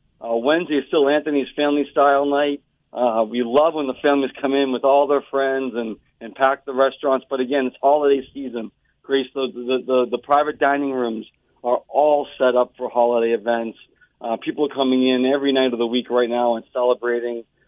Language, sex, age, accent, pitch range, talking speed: English, male, 40-59, American, 125-145 Hz, 200 wpm